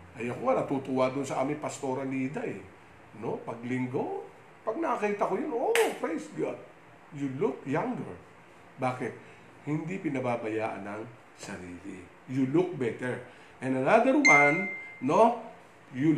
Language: English